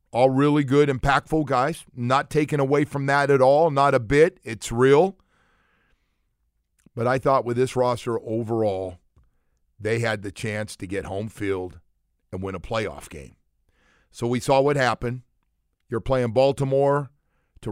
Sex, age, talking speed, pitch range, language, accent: male, 50-69, 155 wpm, 110-175 Hz, English, American